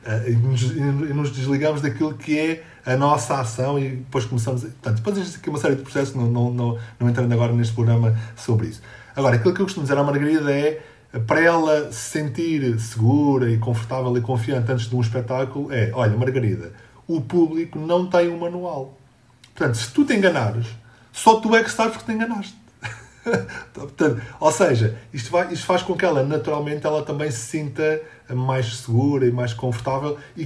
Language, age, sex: Portuguese, 20-39, male